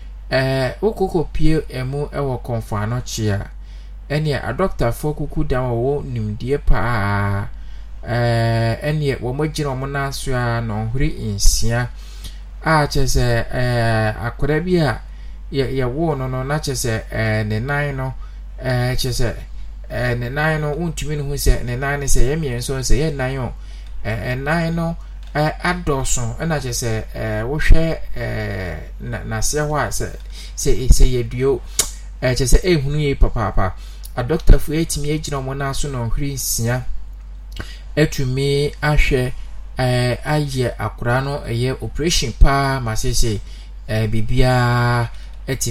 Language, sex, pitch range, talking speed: English, male, 115-145 Hz, 115 wpm